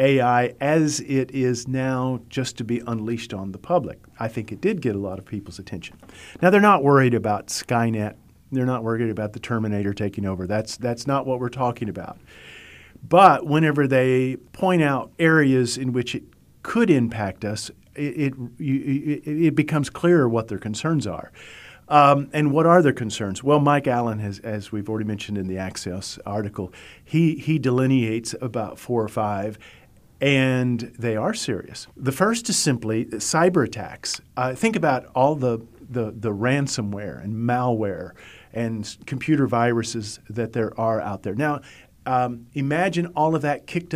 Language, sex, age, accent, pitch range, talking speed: English, male, 50-69, American, 110-145 Hz, 170 wpm